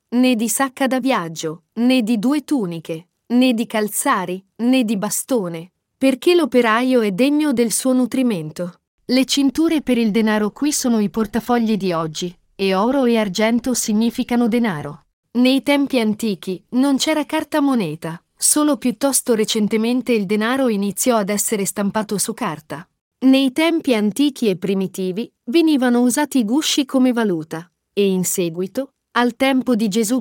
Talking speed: 150 wpm